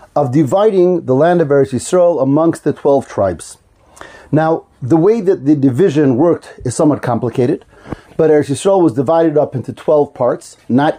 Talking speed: 160 wpm